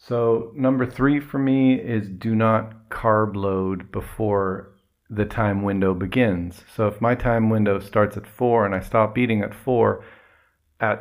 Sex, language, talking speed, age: male, English, 165 wpm, 40-59